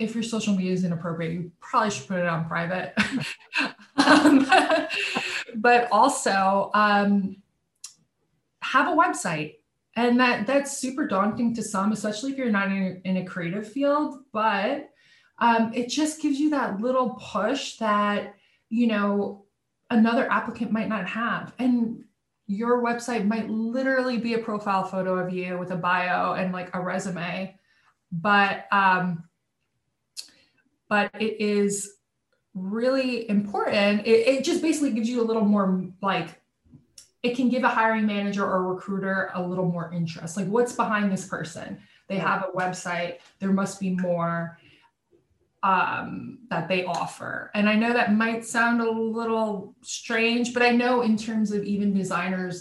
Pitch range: 185-235 Hz